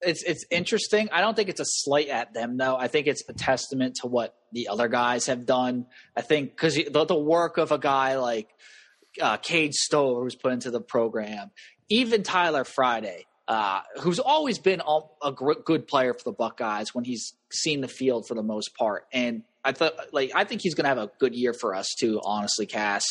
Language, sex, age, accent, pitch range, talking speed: English, male, 20-39, American, 125-160 Hz, 220 wpm